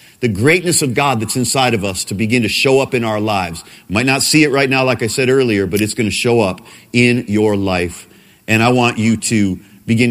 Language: English